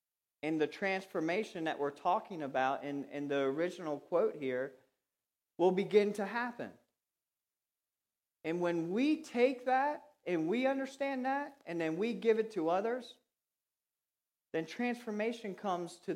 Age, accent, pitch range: 40-59, American, 145-220 Hz